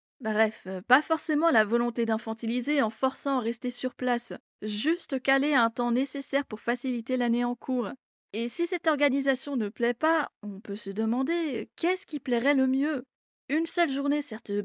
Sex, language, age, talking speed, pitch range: female, French, 20-39, 170 wpm, 230-280 Hz